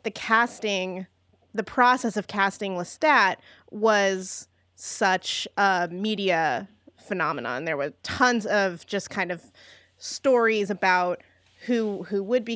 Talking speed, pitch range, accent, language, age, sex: 120 wpm, 185-220 Hz, American, English, 20-39, female